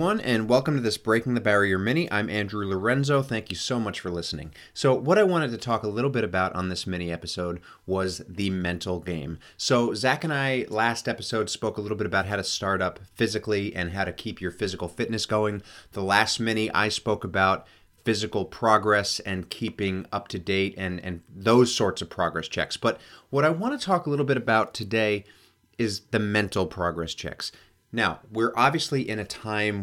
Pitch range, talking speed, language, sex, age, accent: 95-120 Hz, 205 wpm, English, male, 30-49, American